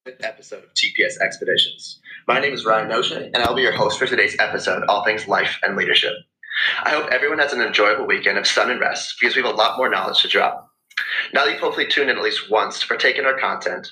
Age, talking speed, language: 30-49, 240 wpm, English